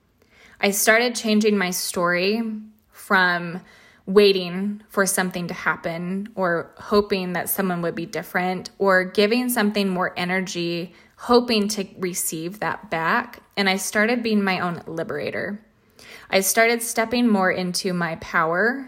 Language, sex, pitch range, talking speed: English, female, 180-220 Hz, 135 wpm